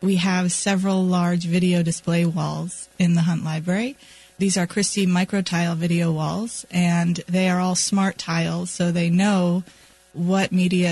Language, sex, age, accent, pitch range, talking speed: English, female, 30-49, American, 175-195 Hz, 155 wpm